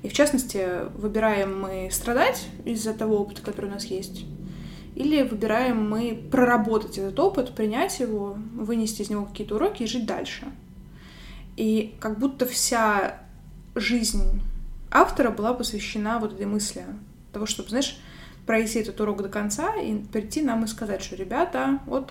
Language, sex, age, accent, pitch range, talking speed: Russian, female, 20-39, native, 205-240 Hz, 150 wpm